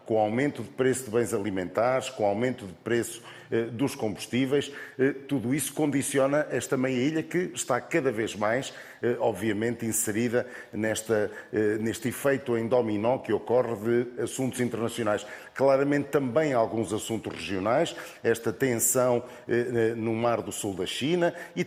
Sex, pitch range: male, 115-130 Hz